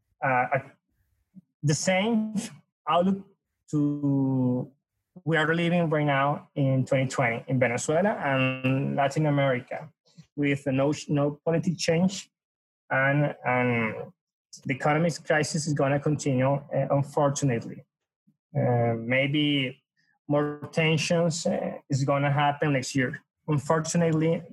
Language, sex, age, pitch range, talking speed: English, male, 20-39, 135-165 Hz, 110 wpm